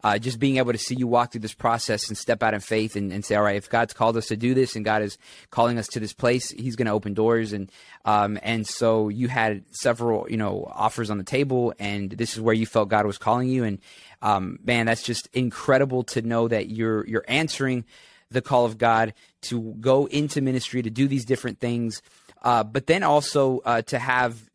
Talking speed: 235 wpm